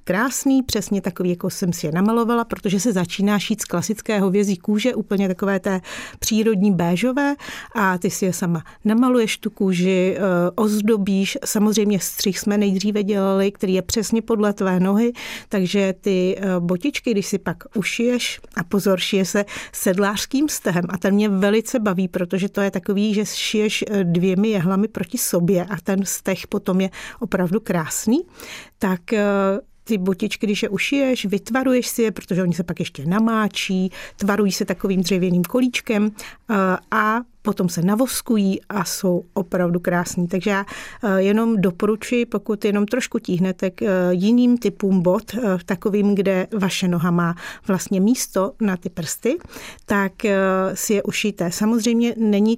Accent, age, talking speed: native, 40-59, 150 wpm